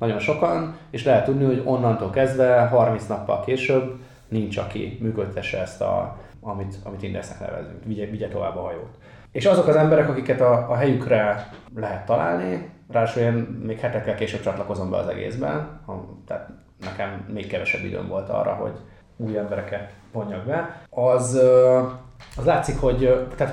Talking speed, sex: 155 wpm, male